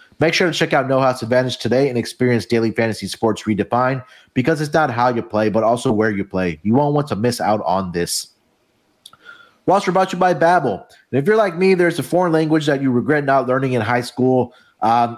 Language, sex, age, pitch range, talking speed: English, male, 30-49, 115-145 Hz, 225 wpm